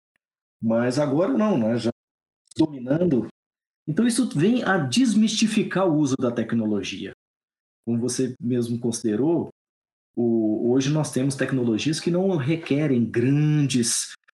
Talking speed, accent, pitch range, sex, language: 115 wpm, Brazilian, 110-145 Hz, male, Portuguese